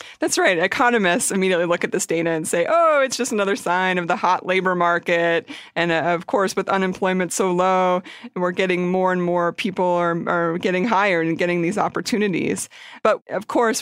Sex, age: female, 30-49